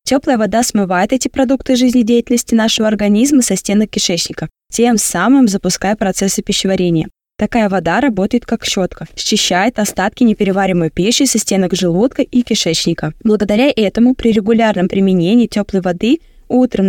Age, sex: 20-39, female